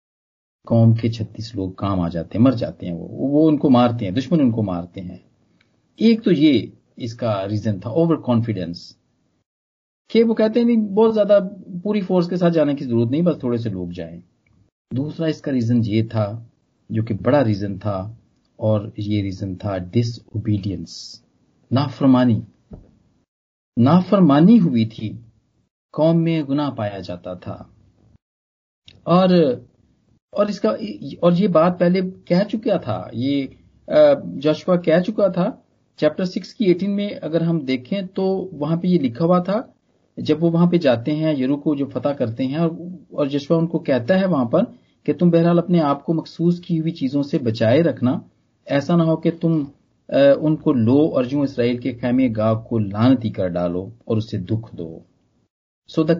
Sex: male